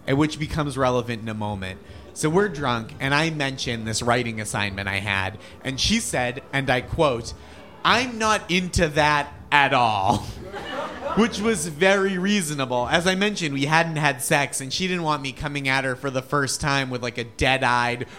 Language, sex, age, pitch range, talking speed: English, male, 30-49, 125-170 Hz, 190 wpm